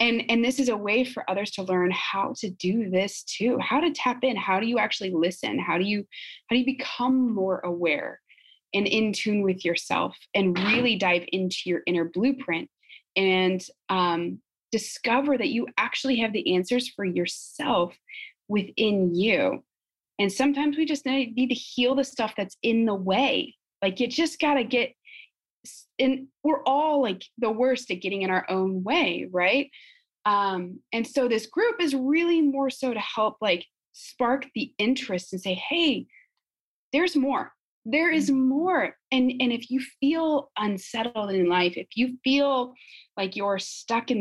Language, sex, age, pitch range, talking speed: English, female, 20-39, 190-270 Hz, 175 wpm